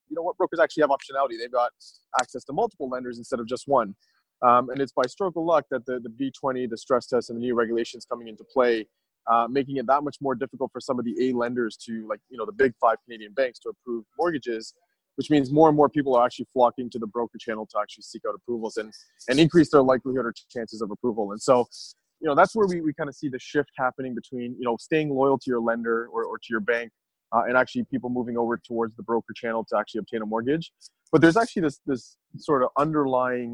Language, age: English, 20-39